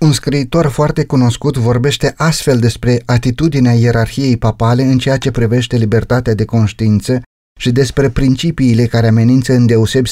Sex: male